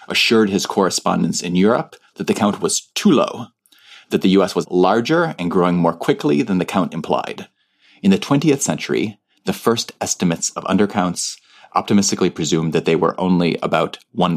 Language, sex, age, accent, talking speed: English, male, 30-49, Canadian, 175 wpm